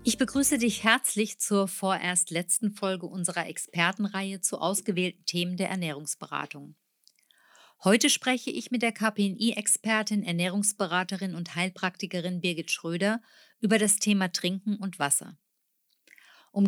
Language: German